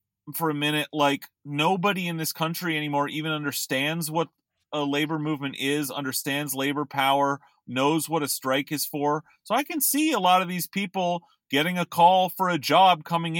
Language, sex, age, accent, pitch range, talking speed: English, male, 30-49, American, 140-170 Hz, 185 wpm